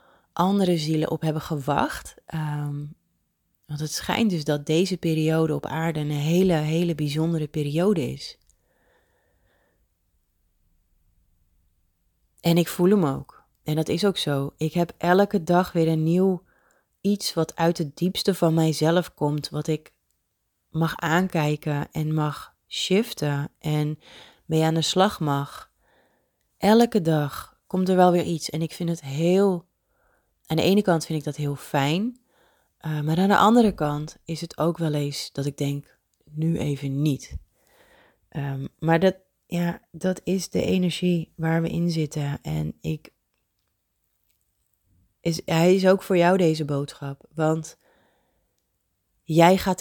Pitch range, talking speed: 145-175 Hz, 145 wpm